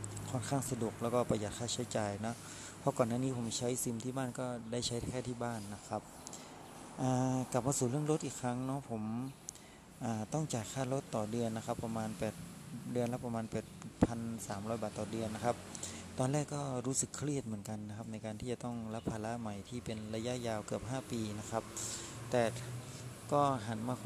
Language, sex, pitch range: Thai, male, 110-125 Hz